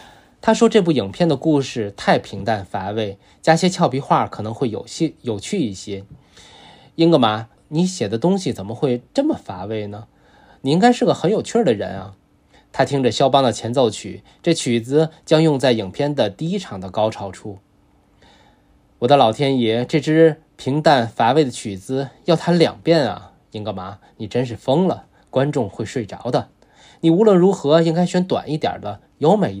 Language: Chinese